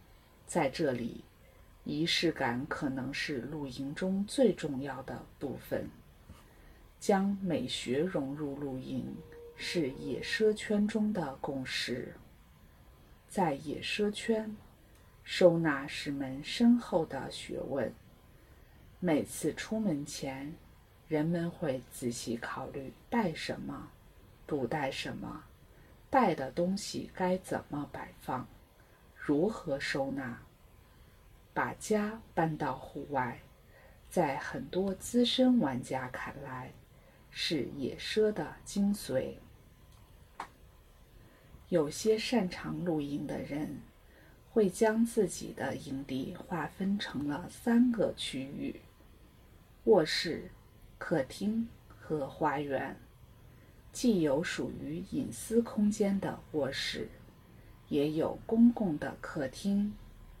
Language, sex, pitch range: English, female, 135-215 Hz